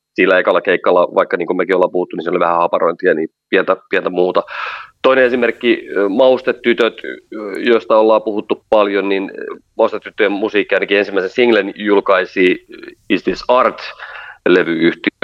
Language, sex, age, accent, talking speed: Finnish, male, 30-49, native, 140 wpm